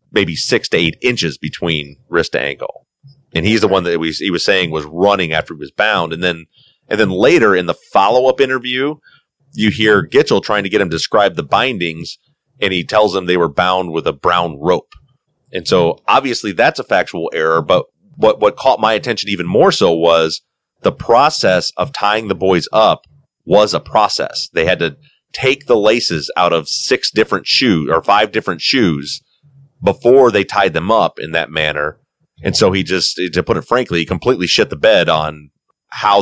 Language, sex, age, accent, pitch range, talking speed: English, male, 30-49, American, 85-125 Hz, 200 wpm